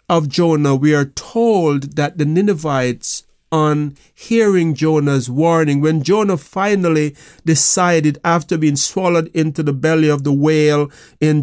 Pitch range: 145-170 Hz